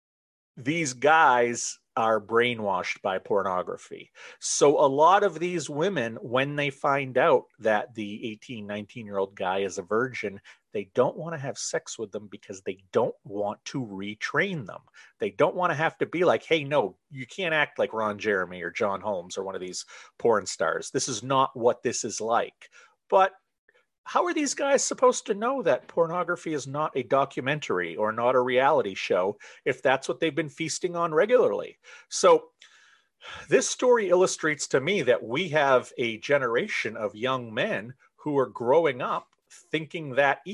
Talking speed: 180 wpm